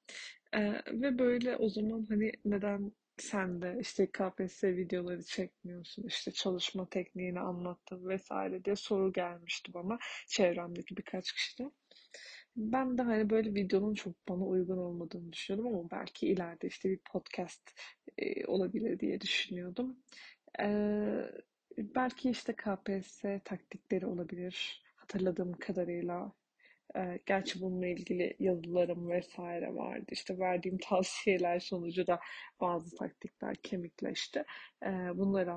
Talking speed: 115 wpm